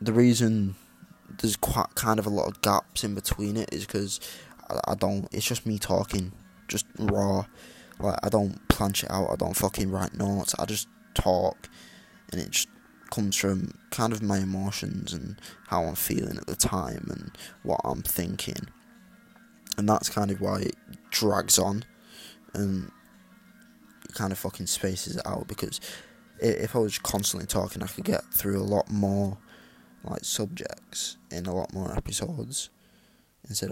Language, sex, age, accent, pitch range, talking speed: English, male, 10-29, British, 95-110 Hz, 165 wpm